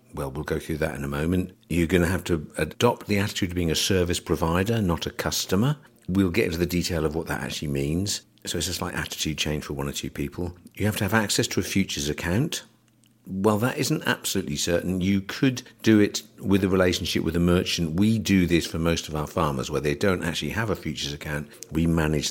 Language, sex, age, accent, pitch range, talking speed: English, male, 50-69, British, 75-100 Hz, 235 wpm